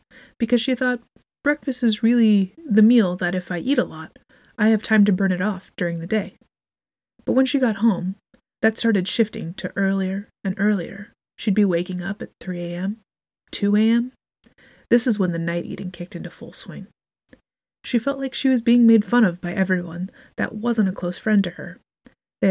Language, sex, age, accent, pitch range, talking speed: English, female, 20-39, American, 180-230 Hz, 190 wpm